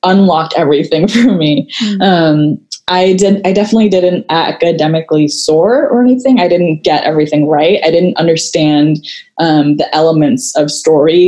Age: 20-39